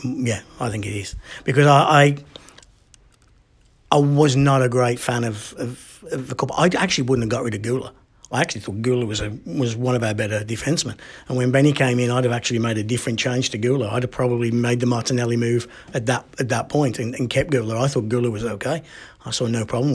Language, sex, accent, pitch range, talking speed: English, male, British, 120-140 Hz, 235 wpm